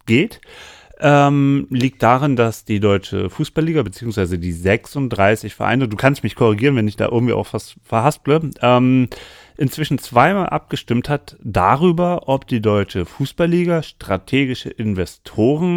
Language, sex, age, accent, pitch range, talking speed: German, male, 40-59, German, 100-135 Hz, 135 wpm